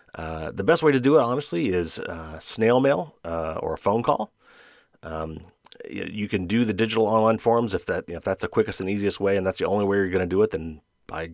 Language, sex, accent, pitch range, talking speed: English, male, American, 80-105 Hz, 255 wpm